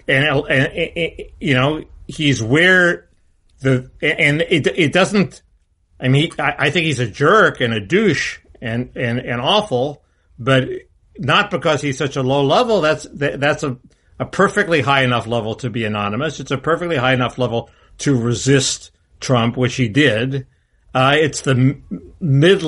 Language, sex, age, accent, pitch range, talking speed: English, male, 60-79, American, 120-145 Hz, 170 wpm